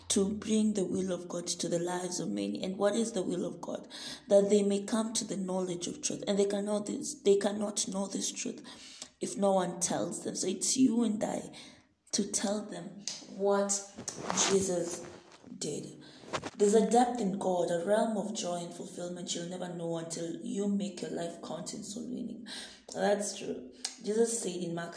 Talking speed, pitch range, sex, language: 195 wpm, 175-220 Hz, female, English